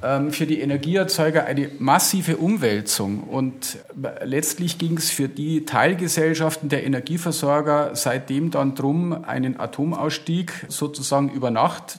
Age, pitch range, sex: 50-69, 135-165 Hz, male